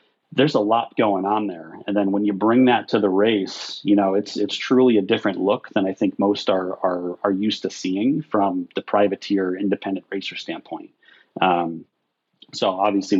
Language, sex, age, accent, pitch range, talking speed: English, male, 30-49, American, 95-105 Hz, 190 wpm